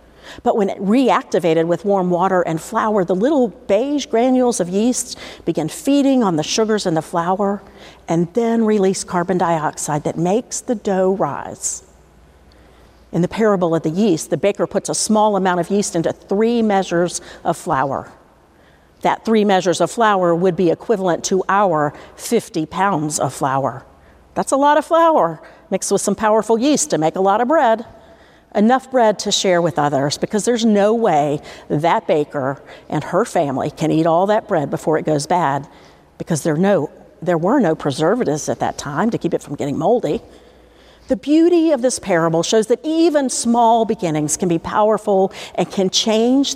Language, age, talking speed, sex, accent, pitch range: English, 50-69, 180 wpm, female, American, 165-225 Hz